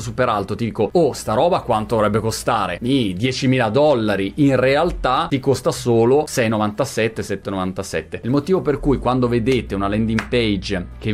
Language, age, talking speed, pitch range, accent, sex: Italian, 30-49, 160 wpm, 95-130 Hz, native, male